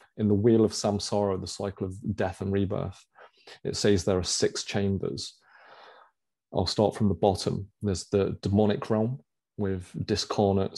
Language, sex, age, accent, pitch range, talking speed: English, male, 30-49, British, 95-105 Hz, 155 wpm